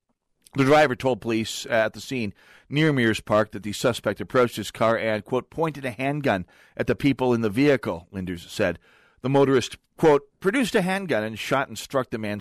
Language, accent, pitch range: English, American, 110-145 Hz